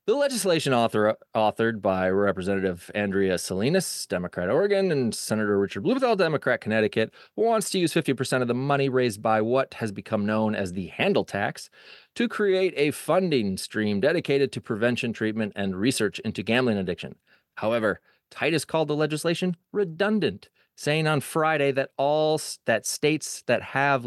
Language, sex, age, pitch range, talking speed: English, male, 30-49, 110-155 Hz, 150 wpm